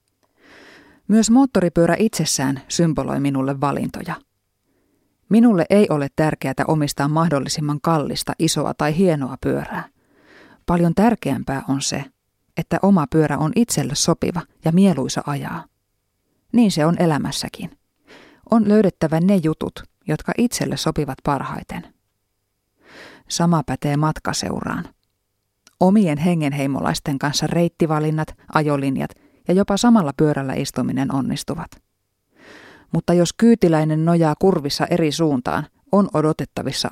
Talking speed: 105 wpm